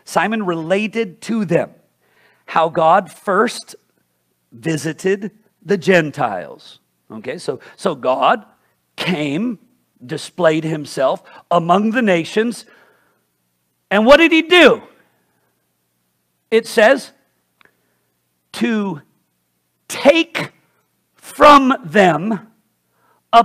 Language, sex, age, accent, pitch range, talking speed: English, male, 50-69, American, 145-235 Hz, 80 wpm